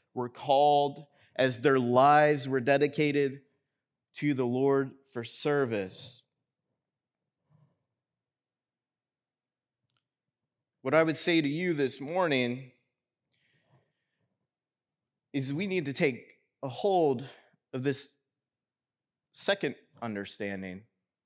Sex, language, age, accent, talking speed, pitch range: male, English, 30-49, American, 90 wpm, 135-160 Hz